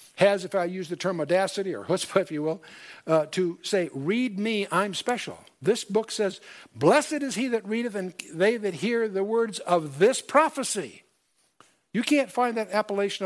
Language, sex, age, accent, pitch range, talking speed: English, male, 60-79, American, 165-215 Hz, 185 wpm